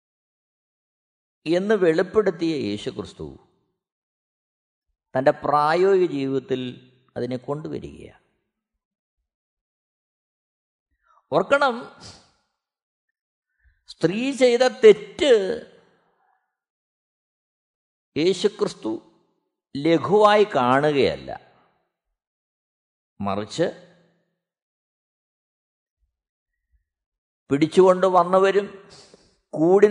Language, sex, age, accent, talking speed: Malayalam, male, 50-69, native, 40 wpm